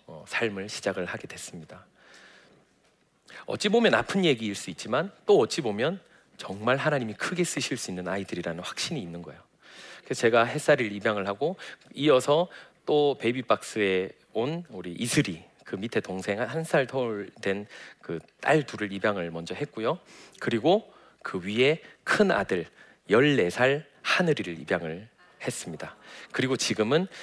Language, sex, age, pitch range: Korean, male, 40-59, 100-150 Hz